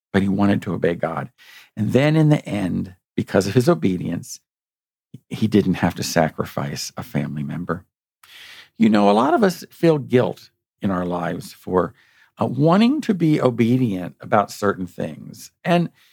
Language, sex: English, male